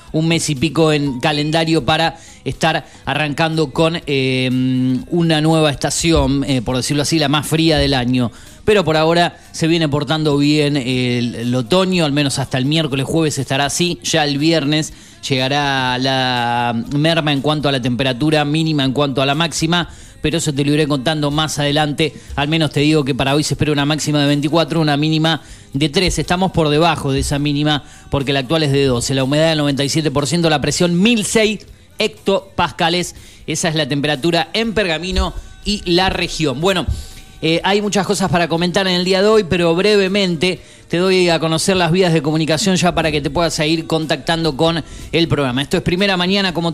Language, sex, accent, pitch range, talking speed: Spanish, male, Argentinian, 140-170 Hz, 195 wpm